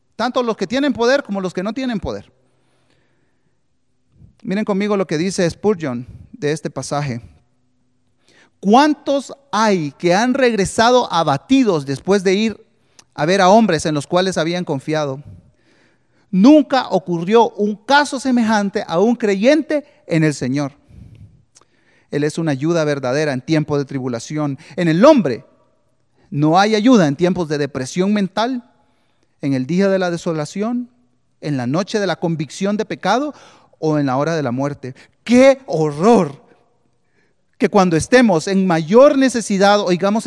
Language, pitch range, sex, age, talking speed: Spanish, 150-220 Hz, male, 40-59, 150 wpm